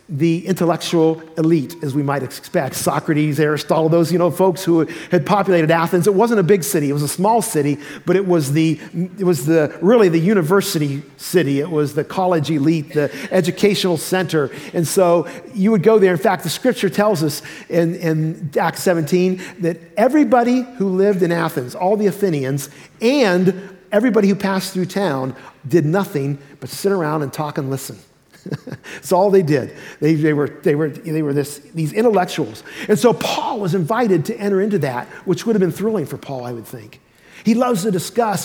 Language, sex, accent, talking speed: English, male, American, 185 wpm